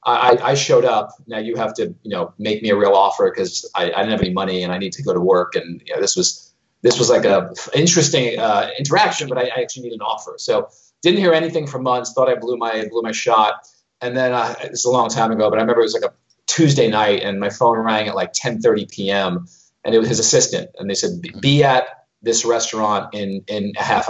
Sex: male